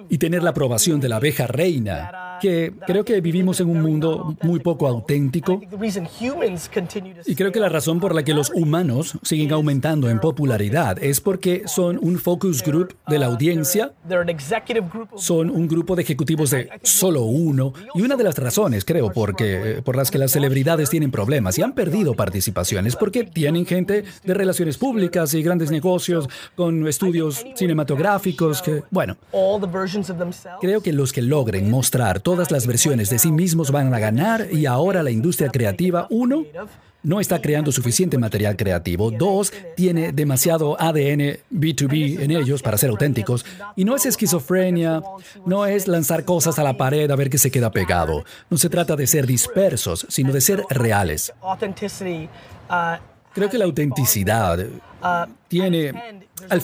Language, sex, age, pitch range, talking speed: Spanish, male, 50-69, 140-185 Hz, 160 wpm